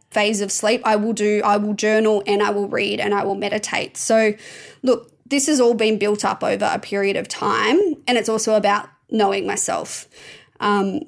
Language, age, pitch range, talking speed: English, 20-39, 205-240 Hz, 200 wpm